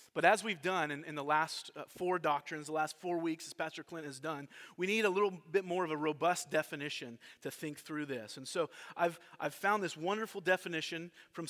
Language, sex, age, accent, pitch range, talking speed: English, male, 30-49, American, 140-180 Hz, 220 wpm